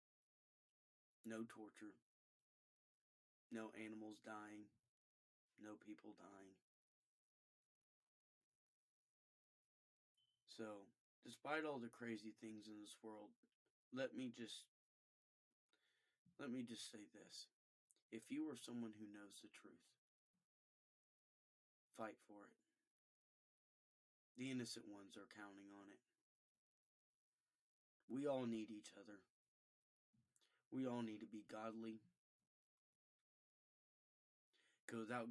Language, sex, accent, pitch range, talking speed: English, male, American, 105-120 Hz, 95 wpm